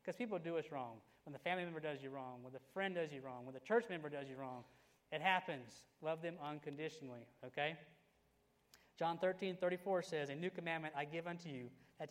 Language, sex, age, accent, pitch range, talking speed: English, male, 30-49, American, 135-175 Hz, 215 wpm